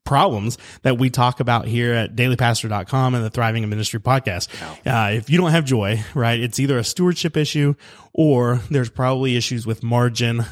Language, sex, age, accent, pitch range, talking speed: English, male, 30-49, American, 120-155 Hz, 185 wpm